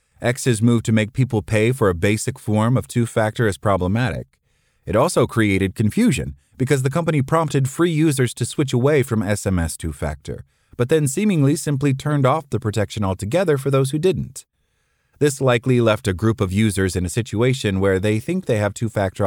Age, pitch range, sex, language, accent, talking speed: 30-49, 100-130 Hz, male, English, American, 185 wpm